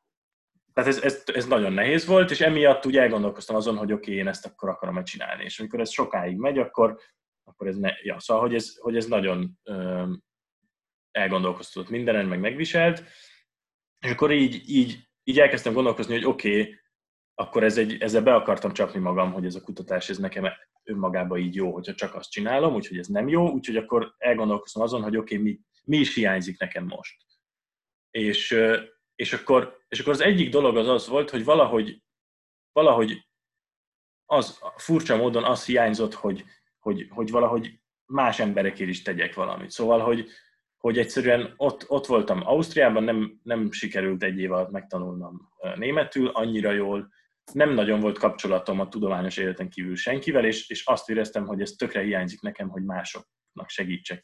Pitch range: 95-130 Hz